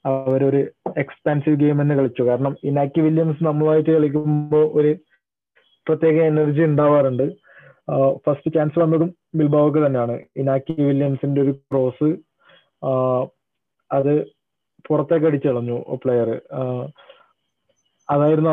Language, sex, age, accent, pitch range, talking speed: Malayalam, male, 30-49, native, 135-160 Hz, 90 wpm